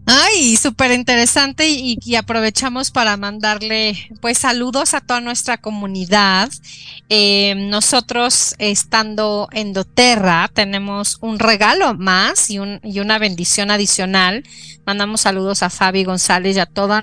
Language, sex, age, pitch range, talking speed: Spanish, female, 30-49, 195-225 Hz, 125 wpm